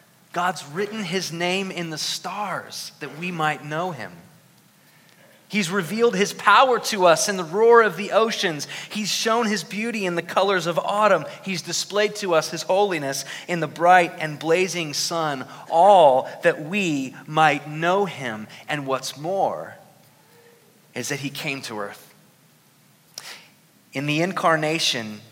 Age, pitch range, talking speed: 30-49, 140-185 Hz, 150 wpm